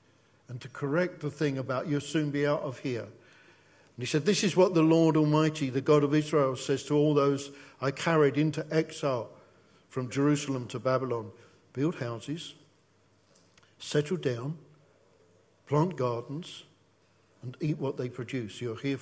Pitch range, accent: 130-160 Hz, British